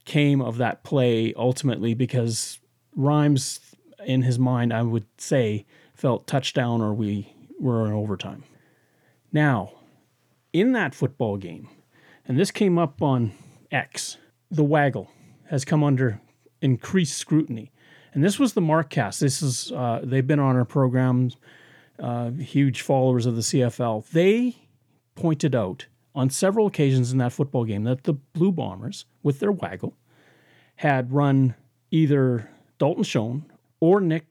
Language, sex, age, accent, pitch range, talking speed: English, male, 30-49, American, 125-155 Hz, 140 wpm